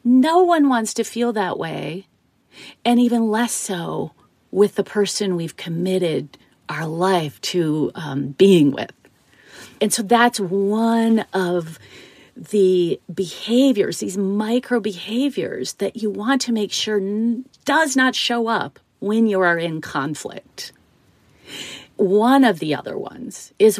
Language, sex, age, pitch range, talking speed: English, female, 40-59, 190-250 Hz, 135 wpm